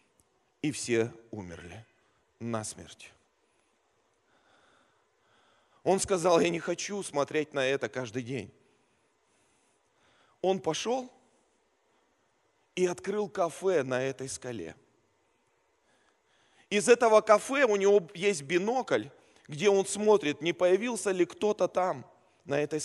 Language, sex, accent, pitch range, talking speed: Russian, male, native, 160-220 Hz, 105 wpm